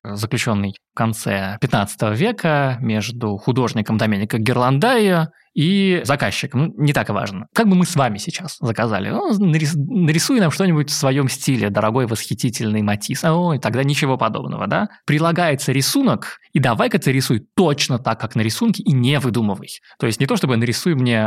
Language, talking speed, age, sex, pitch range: Russian, 160 wpm, 20-39, male, 110-150 Hz